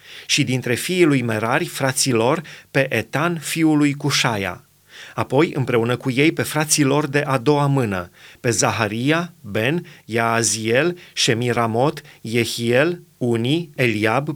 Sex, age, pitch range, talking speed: male, 30-49, 115-150 Hz, 125 wpm